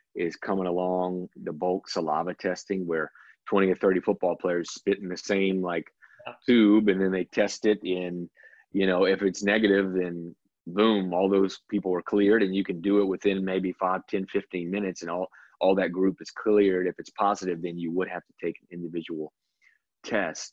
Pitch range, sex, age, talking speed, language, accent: 90-100 Hz, male, 30-49, 195 wpm, English, American